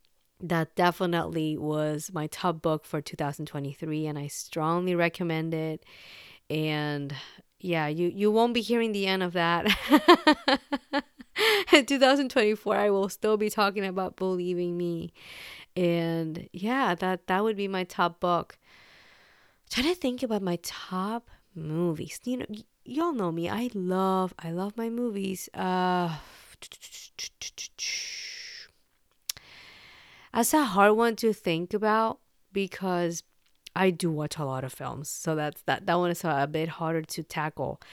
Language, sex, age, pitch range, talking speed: English, female, 30-49, 165-235 Hz, 140 wpm